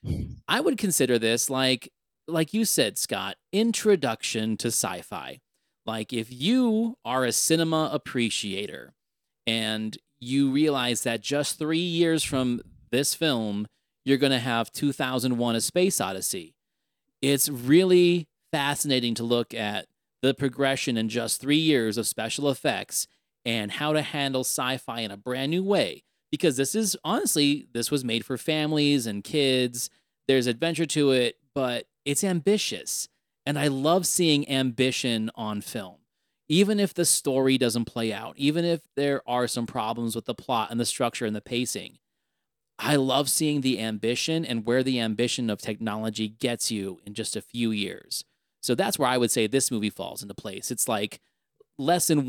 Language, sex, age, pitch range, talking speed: English, male, 30-49, 115-150 Hz, 160 wpm